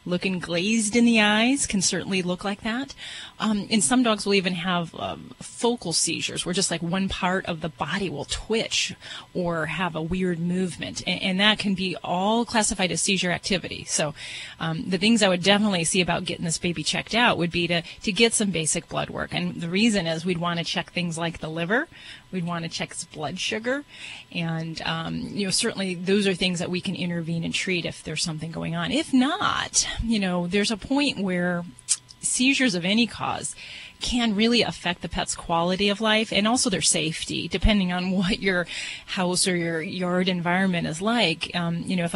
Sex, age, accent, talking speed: female, 30-49, American, 205 wpm